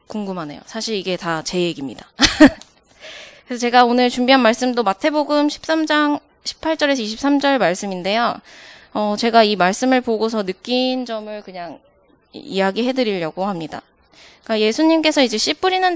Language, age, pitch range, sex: Korean, 20-39, 205-280 Hz, female